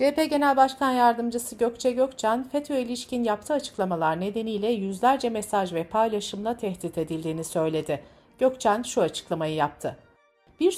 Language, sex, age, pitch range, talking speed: Turkish, female, 60-79, 175-245 Hz, 130 wpm